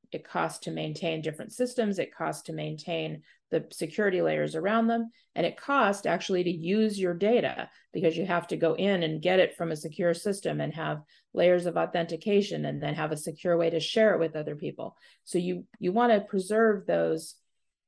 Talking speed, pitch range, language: 200 wpm, 165-215 Hz, English